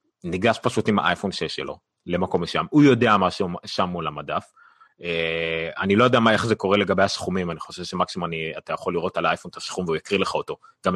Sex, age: male, 30-49